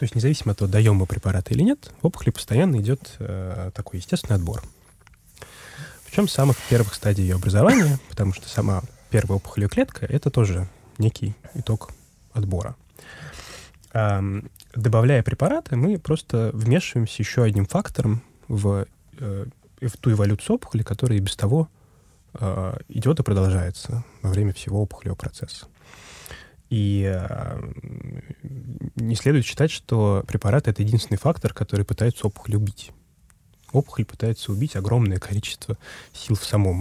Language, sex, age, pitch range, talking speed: Russian, male, 20-39, 100-120 Hz, 140 wpm